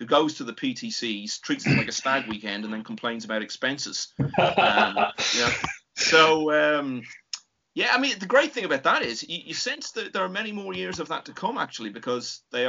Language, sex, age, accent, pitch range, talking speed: English, male, 30-49, British, 115-155 Hz, 220 wpm